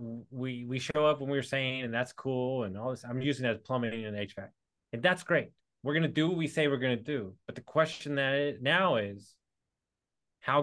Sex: male